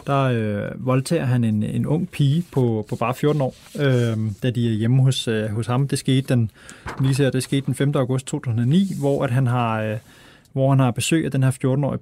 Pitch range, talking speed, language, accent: 120-140 Hz, 215 wpm, Danish, native